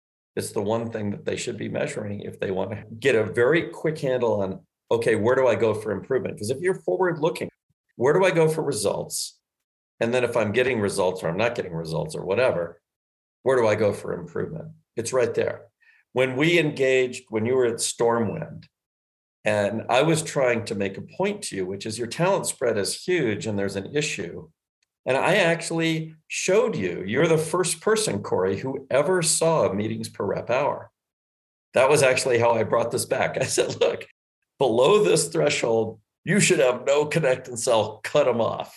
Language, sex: English, male